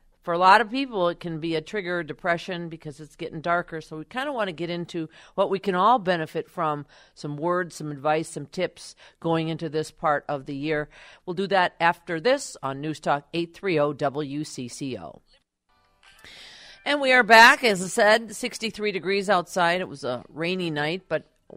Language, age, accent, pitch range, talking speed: English, 50-69, American, 155-190 Hz, 190 wpm